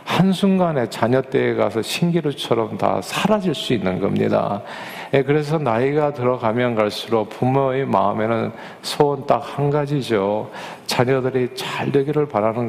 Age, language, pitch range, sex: 40-59, Korean, 115-165 Hz, male